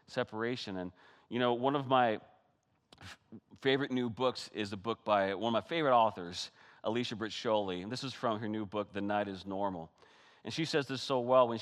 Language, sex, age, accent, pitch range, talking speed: English, male, 40-59, American, 115-160 Hz, 200 wpm